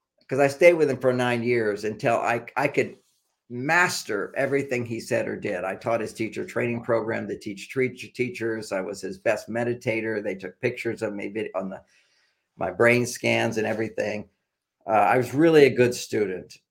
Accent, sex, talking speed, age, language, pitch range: American, male, 185 wpm, 50-69, English, 100-125 Hz